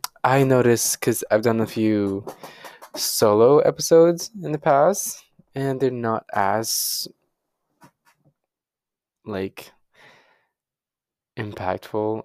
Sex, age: male, 20-39